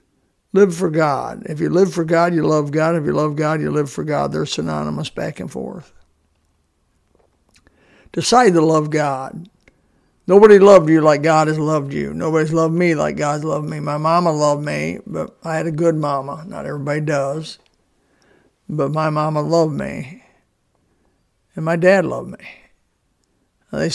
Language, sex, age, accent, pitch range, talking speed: English, male, 60-79, American, 145-170 Hz, 170 wpm